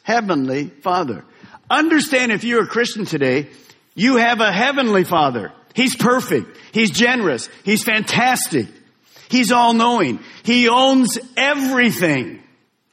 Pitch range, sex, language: 155-225 Hz, male, English